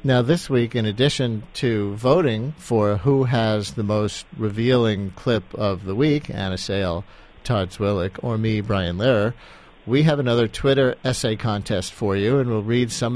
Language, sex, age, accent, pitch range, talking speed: English, male, 50-69, American, 100-125 Hz, 170 wpm